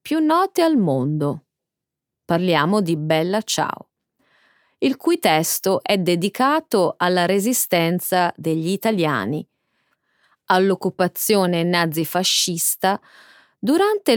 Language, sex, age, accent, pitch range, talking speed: Italian, female, 30-49, native, 160-250 Hz, 85 wpm